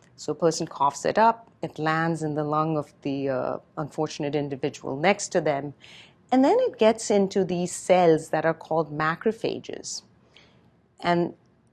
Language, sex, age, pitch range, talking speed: English, female, 40-59, 155-215 Hz, 160 wpm